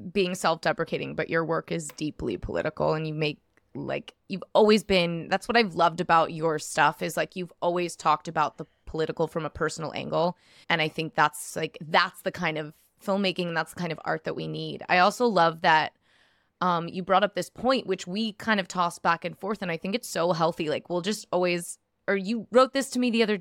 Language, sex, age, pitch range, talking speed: English, female, 20-39, 165-210 Hz, 225 wpm